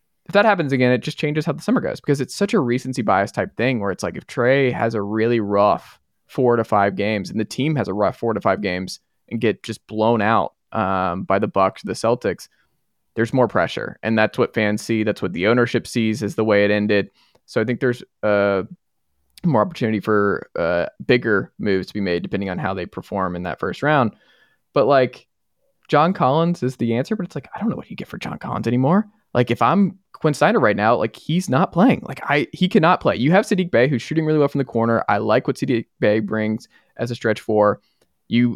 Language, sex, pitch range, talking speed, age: English, male, 105-140 Hz, 235 wpm, 20-39